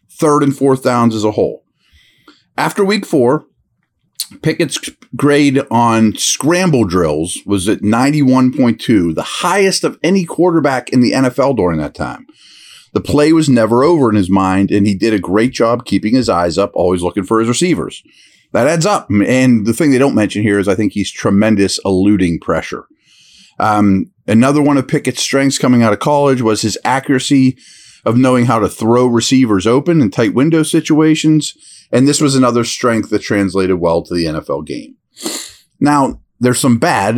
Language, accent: English, American